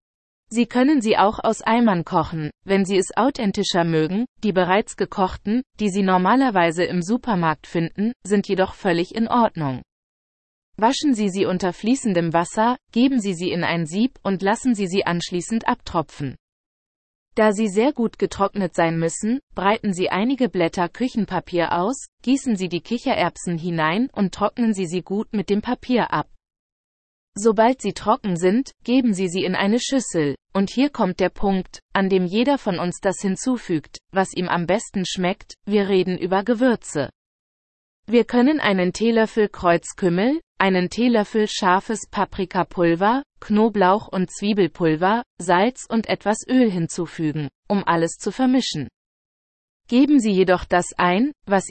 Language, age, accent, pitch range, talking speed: English, 20-39, German, 180-230 Hz, 150 wpm